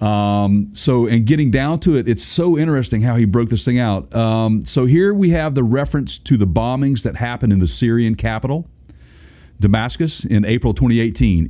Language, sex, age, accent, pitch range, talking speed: English, male, 50-69, American, 100-130 Hz, 190 wpm